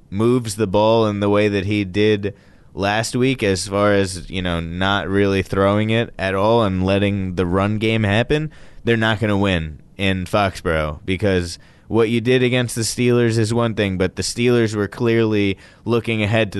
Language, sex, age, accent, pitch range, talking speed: English, male, 20-39, American, 95-115 Hz, 190 wpm